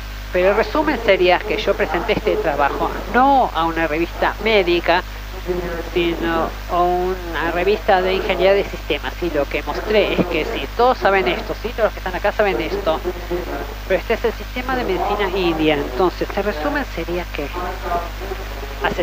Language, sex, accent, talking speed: English, female, Argentinian, 170 wpm